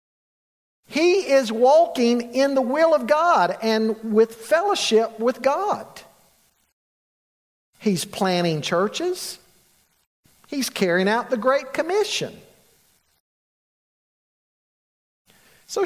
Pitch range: 185-275 Hz